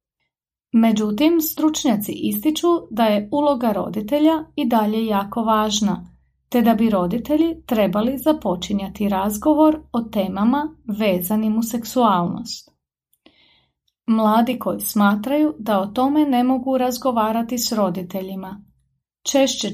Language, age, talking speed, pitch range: Croatian, 30-49, 105 wpm, 205-265 Hz